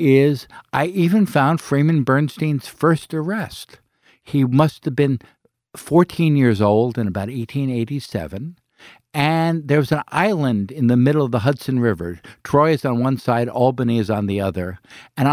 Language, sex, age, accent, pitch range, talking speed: English, male, 60-79, American, 120-170 Hz, 160 wpm